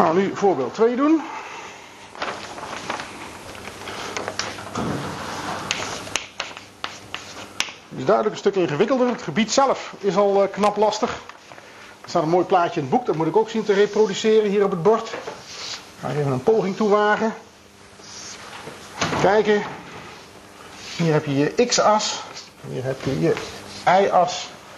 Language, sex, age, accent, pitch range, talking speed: Dutch, male, 50-69, Dutch, 145-215 Hz, 135 wpm